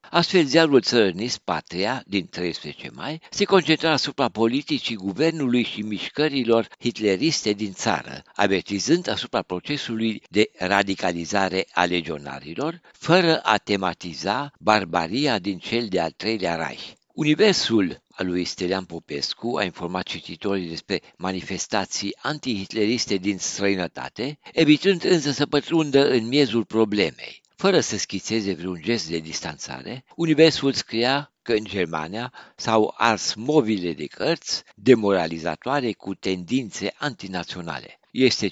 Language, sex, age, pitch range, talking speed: Romanian, male, 60-79, 90-130 Hz, 115 wpm